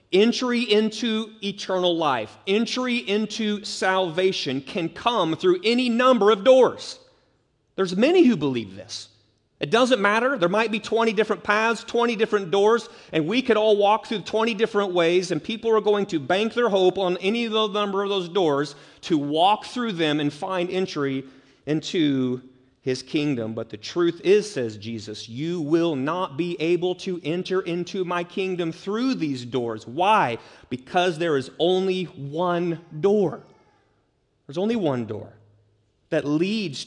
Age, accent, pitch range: 30-49, American, 155-230 Hz